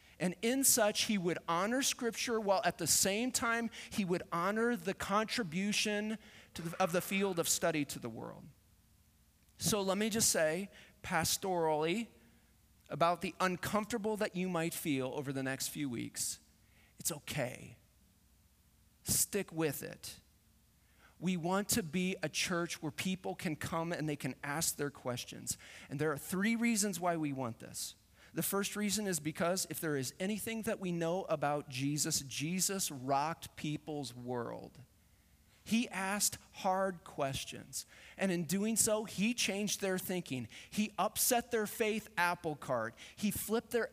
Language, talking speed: English, 155 wpm